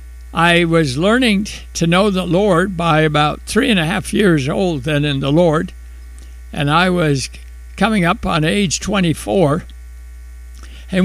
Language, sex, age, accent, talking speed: English, male, 60-79, American, 150 wpm